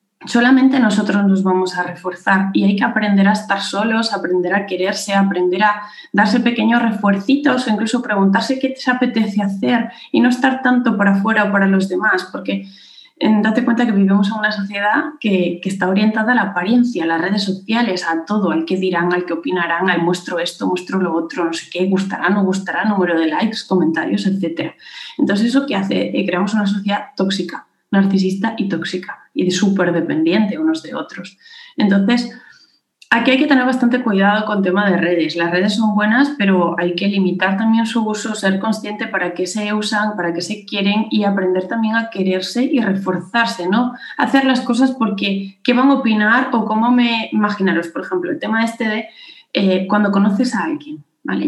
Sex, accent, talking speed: female, Spanish, 190 wpm